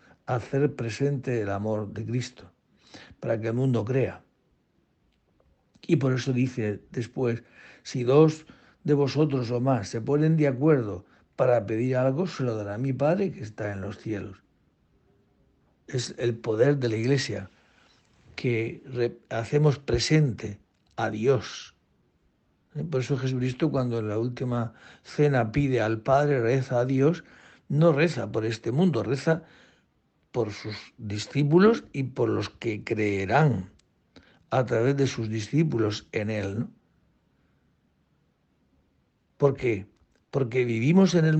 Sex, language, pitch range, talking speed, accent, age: male, Spanish, 110-145 Hz, 130 wpm, Spanish, 60-79